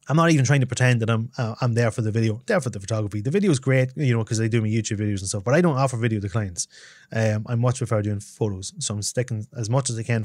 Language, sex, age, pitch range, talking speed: English, male, 20-39, 115-135 Hz, 310 wpm